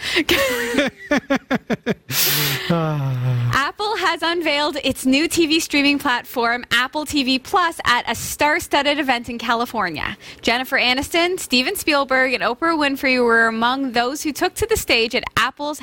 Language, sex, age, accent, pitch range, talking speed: English, female, 10-29, American, 230-310 Hz, 130 wpm